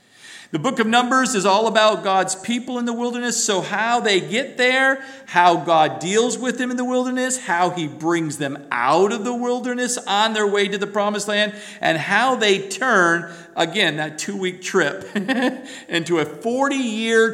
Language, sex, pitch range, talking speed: English, male, 135-205 Hz, 175 wpm